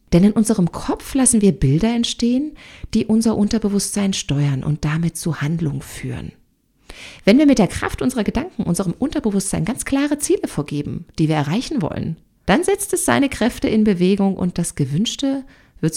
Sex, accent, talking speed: female, German, 170 wpm